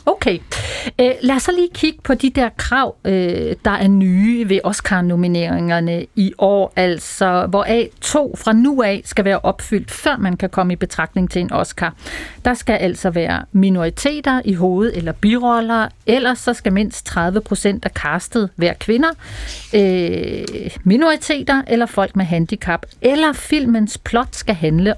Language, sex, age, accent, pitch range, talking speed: Danish, female, 40-59, native, 185-245 Hz, 155 wpm